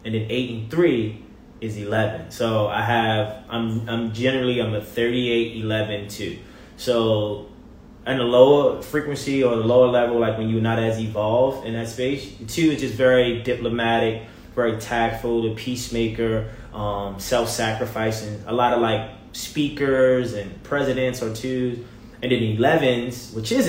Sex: male